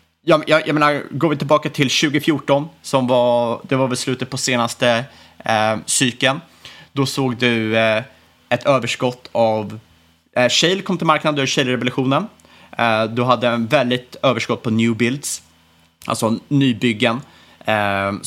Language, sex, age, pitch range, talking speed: Swedish, male, 30-49, 110-135 Hz, 150 wpm